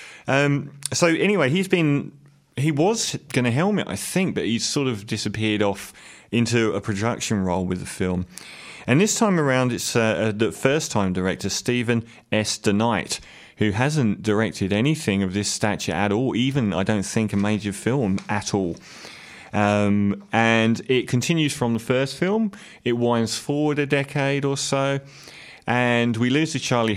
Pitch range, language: 100-130 Hz, English